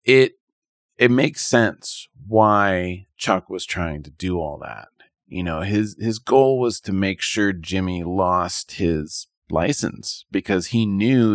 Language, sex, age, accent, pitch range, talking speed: English, male, 30-49, American, 90-115 Hz, 150 wpm